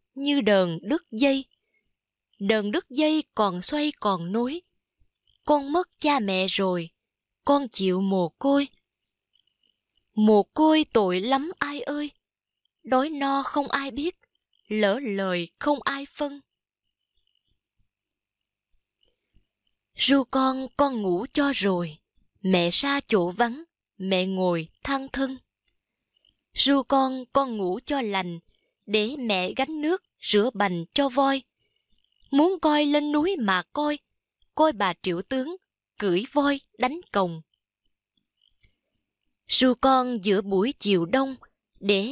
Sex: female